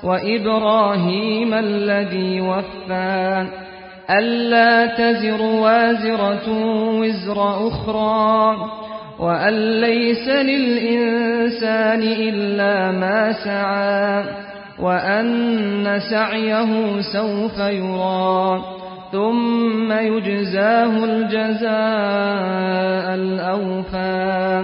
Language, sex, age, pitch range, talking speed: Persian, male, 40-59, 190-220 Hz, 55 wpm